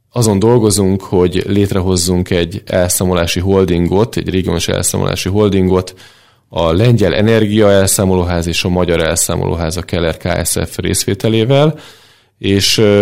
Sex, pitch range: male, 90-105 Hz